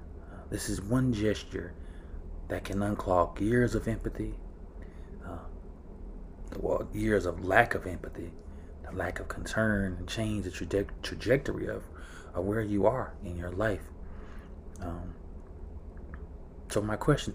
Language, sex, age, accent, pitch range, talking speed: English, male, 30-49, American, 80-100 Hz, 125 wpm